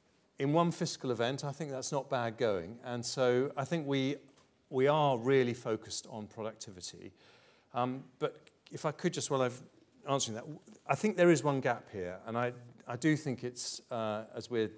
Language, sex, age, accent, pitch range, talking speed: English, male, 40-59, British, 110-145 Hz, 195 wpm